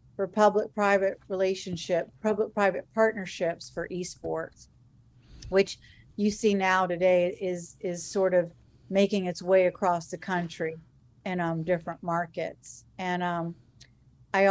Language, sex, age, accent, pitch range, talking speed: English, female, 40-59, American, 165-190 Hz, 120 wpm